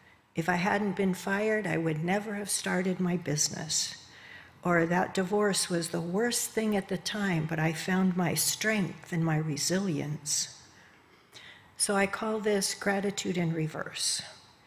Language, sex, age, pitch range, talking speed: English, female, 60-79, 155-190 Hz, 150 wpm